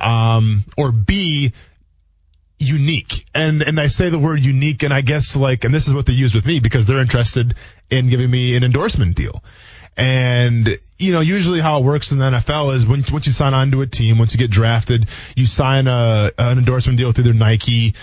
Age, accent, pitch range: 20-39, American, 110-135 Hz